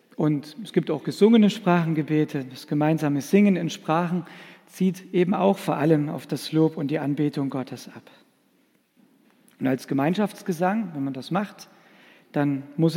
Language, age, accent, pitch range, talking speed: German, 50-69, German, 150-195 Hz, 155 wpm